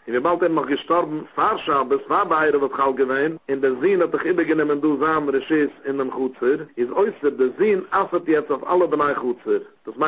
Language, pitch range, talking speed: English, 140-190 Hz, 90 wpm